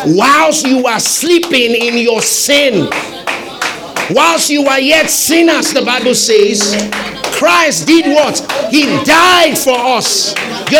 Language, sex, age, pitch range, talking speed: English, male, 50-69, 195-290 Hz, 130 wpm